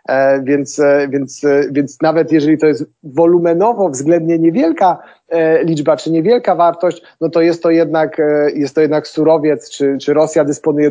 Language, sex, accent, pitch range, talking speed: Polish, male, native, 140-170 Hz, 150 wpm